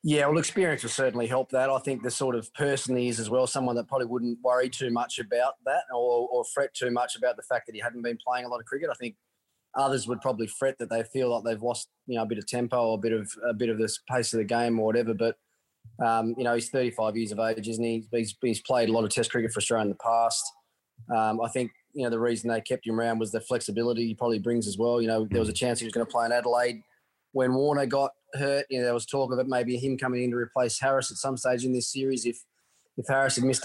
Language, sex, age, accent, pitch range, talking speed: English, male, 20-39, Australian, 115-135 Hz, 285 wpm